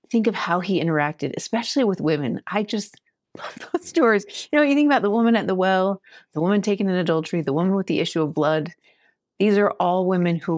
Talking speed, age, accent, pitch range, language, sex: 225 wpm, 40-59, American, 165-240 Hz, English, female